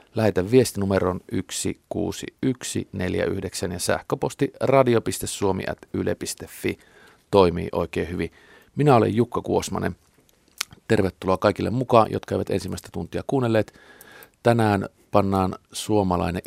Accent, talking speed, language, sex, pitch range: native, 85 wpm, Finnish, male, 90-110 Hz